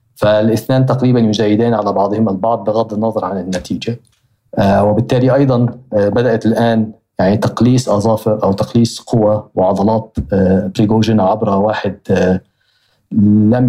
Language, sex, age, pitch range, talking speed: Arabic, male, 50-69, 100-120 Hz, 125 wpm